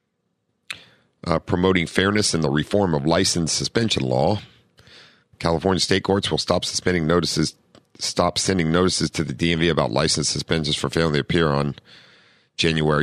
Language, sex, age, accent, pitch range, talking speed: English, male, 50-69, American, 70-90 Hz, 145 wpm